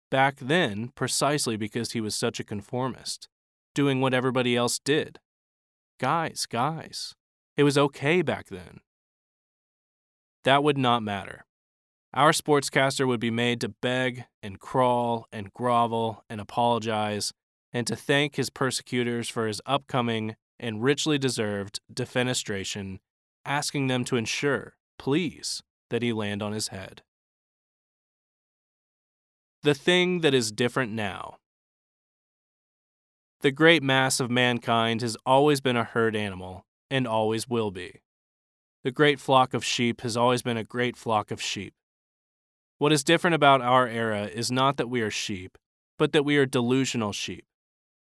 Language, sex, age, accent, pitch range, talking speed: English, male, 20-39, American, 110-135 Hz, 140 wpm